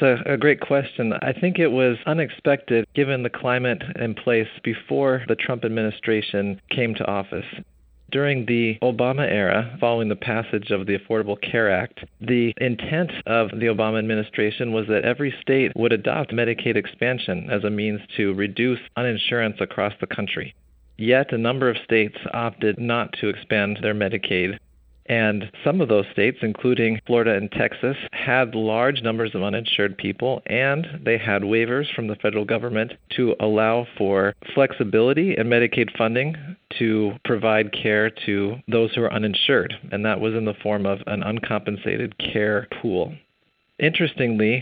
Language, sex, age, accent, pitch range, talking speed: English, male, 40-59, American, 105-125 Hz, 155 wpm